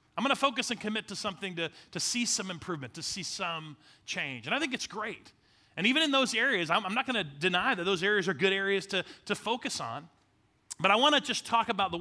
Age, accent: 30-49, American